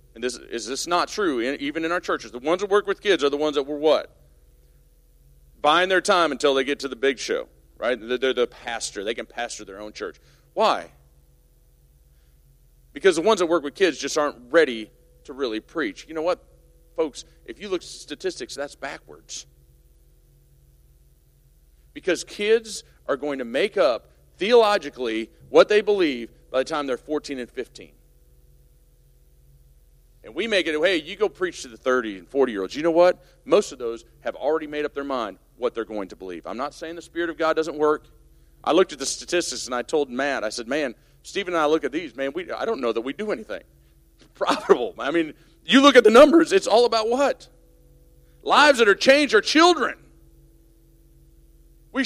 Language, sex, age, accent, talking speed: English, male, 40-59, American, 195 wpm